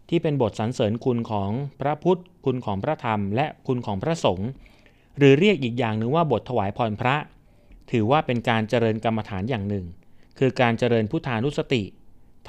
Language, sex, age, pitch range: Thai, male, 30-49, 105-135 Hz